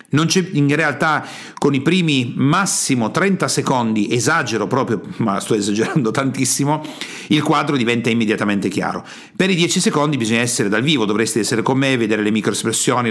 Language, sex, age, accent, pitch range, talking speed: Italian, male, 50-69, native, 115-150 Hz, 165 wpm